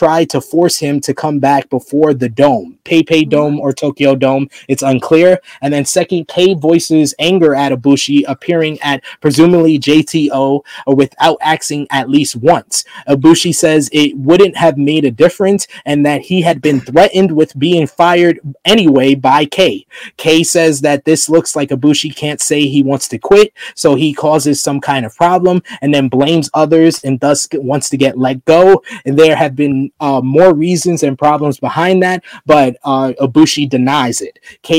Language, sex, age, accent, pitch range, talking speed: English, male, 20-39, American, 140-165 Hz, 180 wpm